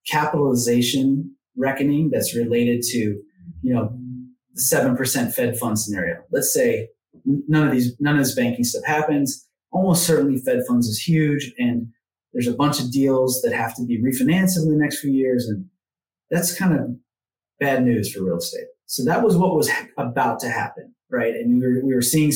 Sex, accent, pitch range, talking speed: male, American, 120-150 Hz, 185 wpm